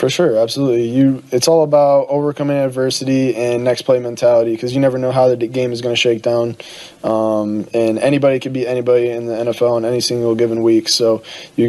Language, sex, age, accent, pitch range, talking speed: English, male, 20-39, American, 120-130 Hz, 205 wpm